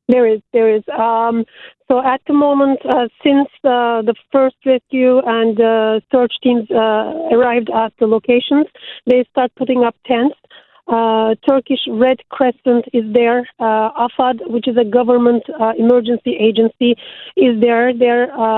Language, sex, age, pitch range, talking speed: English, female, 40-59, 230-255 Hz, 150 wpm